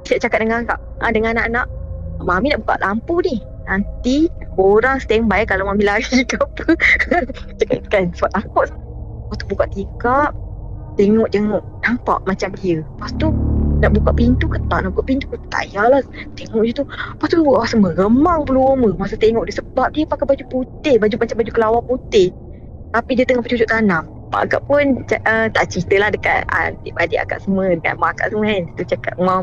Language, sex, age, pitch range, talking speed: Malay, female, 20-39, 185-250 Hz, 190 wpm